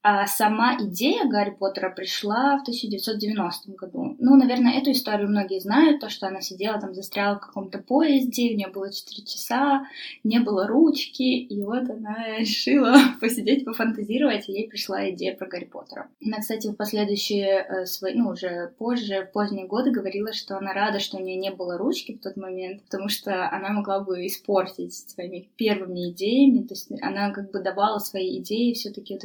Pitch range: 195-255 Hz